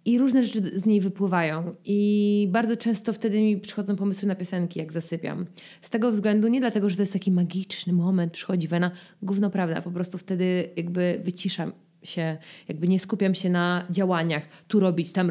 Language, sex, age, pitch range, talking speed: Polish, female, 20-39, 170-195 Hz, 190 wpm